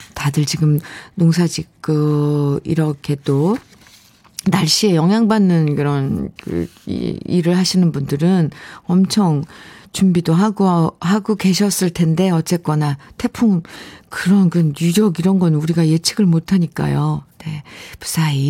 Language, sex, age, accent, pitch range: Korean, female, 50-69, native, 165-255 Hz